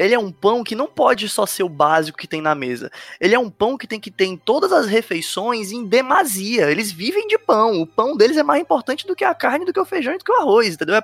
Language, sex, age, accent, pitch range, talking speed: Portuguese, male, 20-39, Brazilian, 155-230 Hz, 290 wpm